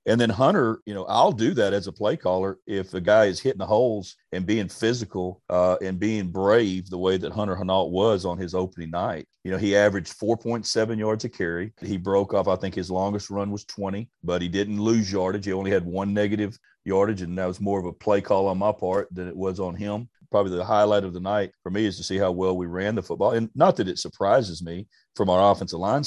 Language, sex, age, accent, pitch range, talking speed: English, male, 40-59, American, 90-105 Hz, 250 wpm